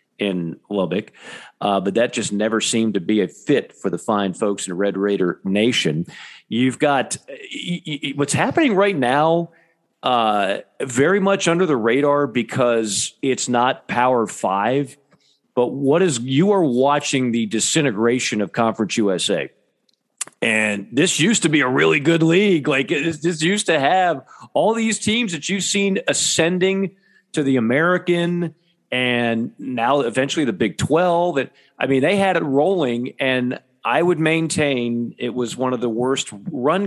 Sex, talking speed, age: male, 155 wpm, 40-59